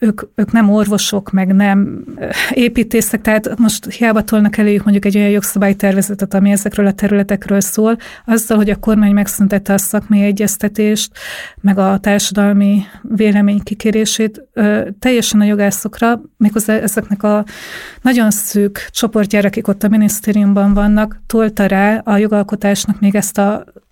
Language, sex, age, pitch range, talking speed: Hungarian, female, 30-49, 205-225 Hz, 140 wpm